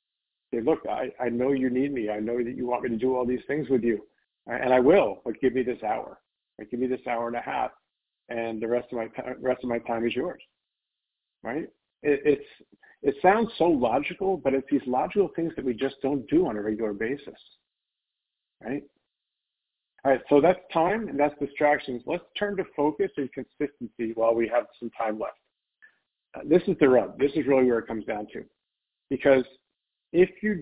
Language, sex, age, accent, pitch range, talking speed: English, male, 50-69, American, 115-145 Hz, 210 wpm